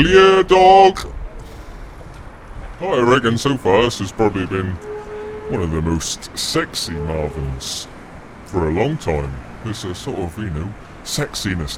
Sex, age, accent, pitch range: female, 30-49, British, 80-115 Hz